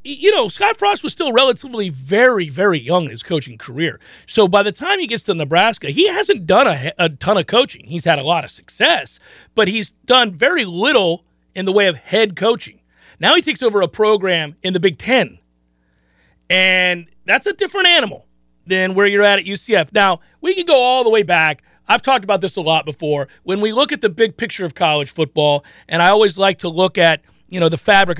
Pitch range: 165-225 Hz